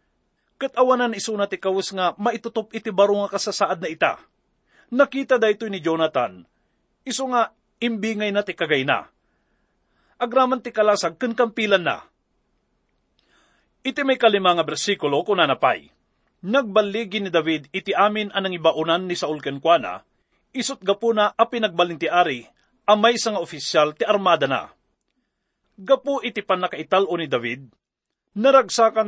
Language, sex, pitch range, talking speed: English, male, 175-230 Hz, 120 wpm